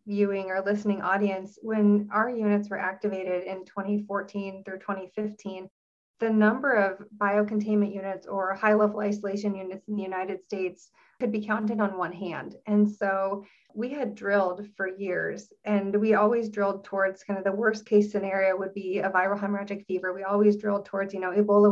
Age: 30-49